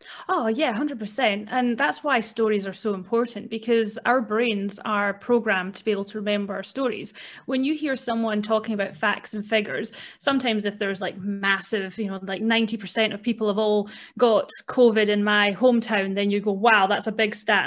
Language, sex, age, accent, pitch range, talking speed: English, female, 30-49, British, 210-245 Hz, 195 wpm